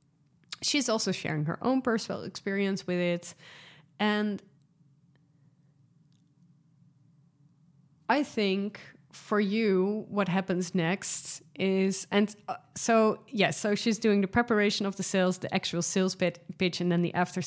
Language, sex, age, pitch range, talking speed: English, female, 30-49, 160-190 Hz, 130 wpm